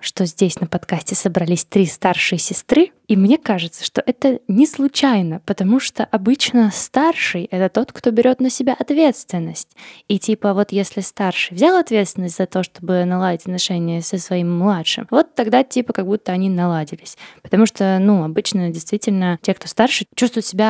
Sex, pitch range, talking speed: female, 180-225 Hz, 170 wpm